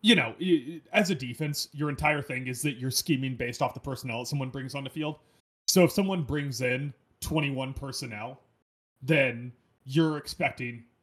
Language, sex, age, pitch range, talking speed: English, male, 30-49, 120-150 Hz, 175 wpm